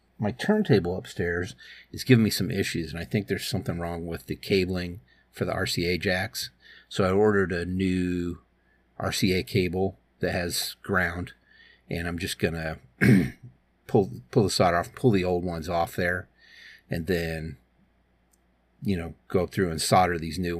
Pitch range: 85-105 Hz